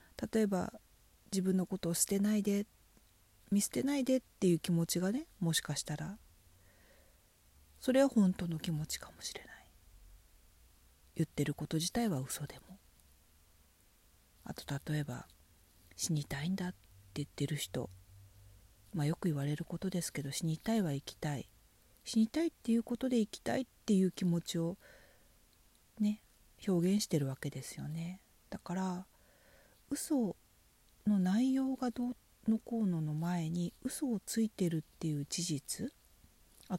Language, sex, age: Japanese, female, 40-59